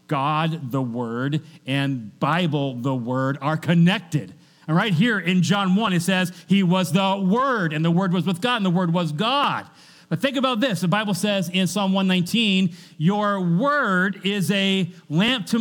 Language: English